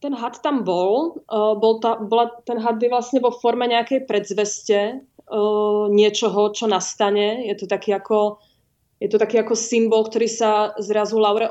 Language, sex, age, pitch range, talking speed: Czech, female, 20-39, 205-220 Hz, 160 wpm